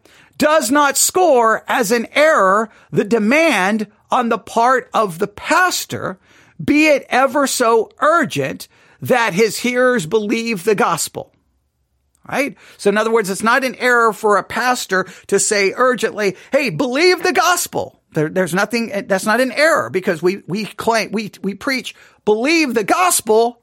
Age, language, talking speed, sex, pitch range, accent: 40-59, English, 150 wpm, male, 205-285 Hz, American